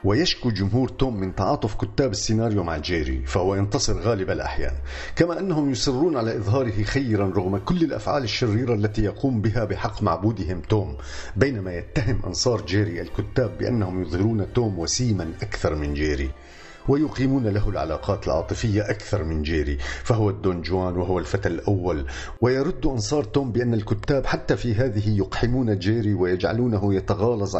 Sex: male